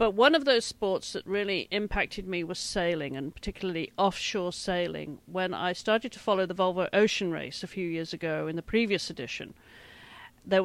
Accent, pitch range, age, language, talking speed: British, 170-200 Hz, 40-59, English, 185 wpm